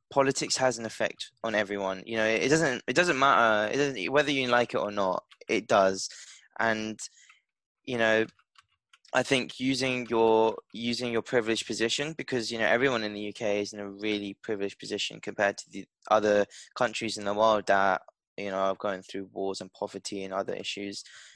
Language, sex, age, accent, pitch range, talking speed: English, male, 10-29, British, 105-125 Hz, 185 wpm